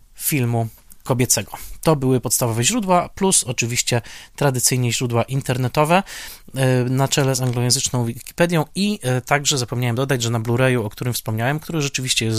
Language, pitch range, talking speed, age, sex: Polish, 115-140 Hz, 140 wpm, 20-39, male